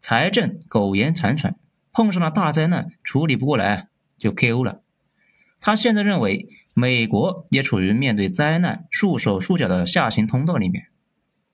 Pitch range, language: 125-190 Hz, Chinese